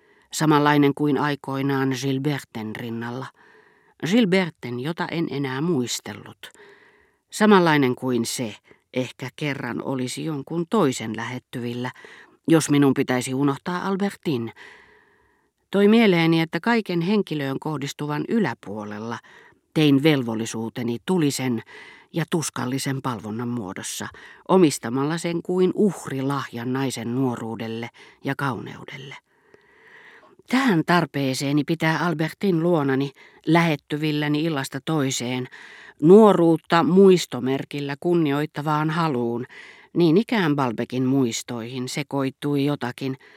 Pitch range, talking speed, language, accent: 130-170 Hz, 90 wpm, Finnish, native